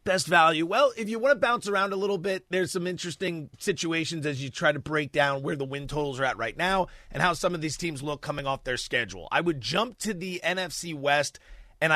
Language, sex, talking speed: English, male, 245 wpm